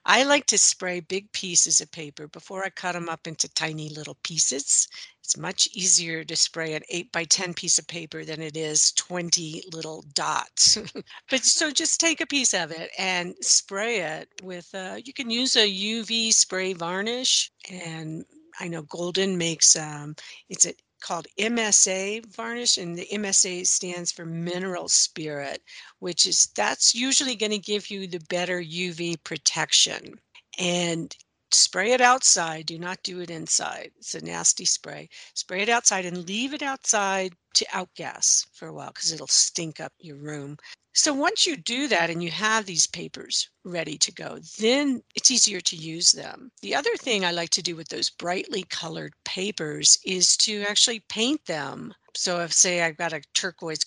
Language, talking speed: English, 175 wpm